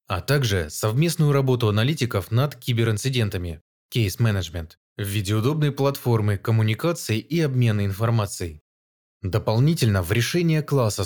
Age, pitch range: 20-39, 100-135 Hz